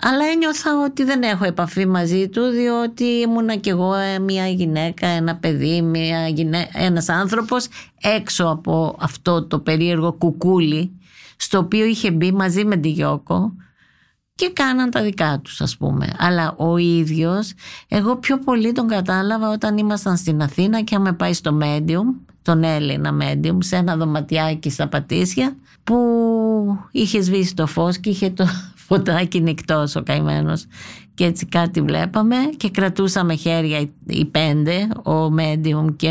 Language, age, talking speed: Greek, 50-69, 155 wpm